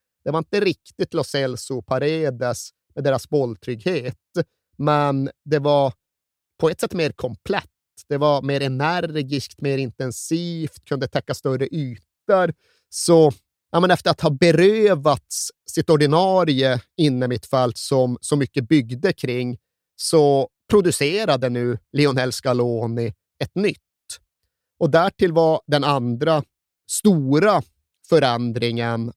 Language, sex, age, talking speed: Swedish, male, 30-49, 120 wpm